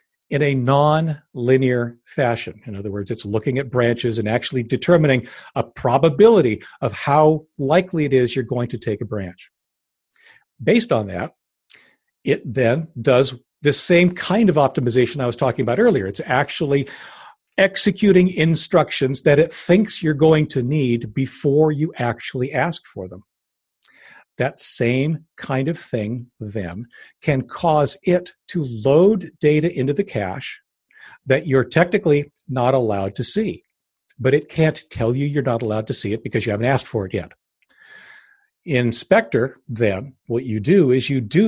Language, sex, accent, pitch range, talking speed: English, male, American, 120-160 Hz, 160 wpm